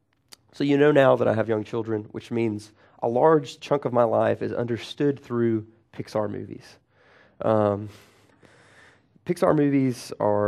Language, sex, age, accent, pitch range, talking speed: English, male, 30-49, American, 115-150 Hz, 150 wpm